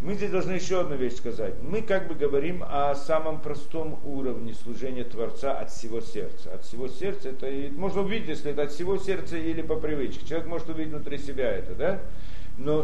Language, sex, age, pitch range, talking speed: Russian, male, 40-59, 125-180 Hz, 200 wpm